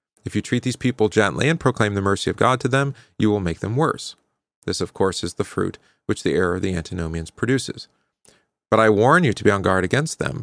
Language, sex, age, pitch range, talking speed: English, male, 40-59, 95-130 Hz, 240 wpm